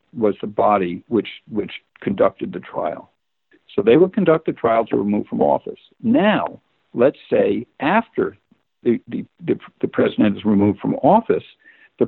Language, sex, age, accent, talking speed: English, male, 60-79, American, 160 wpm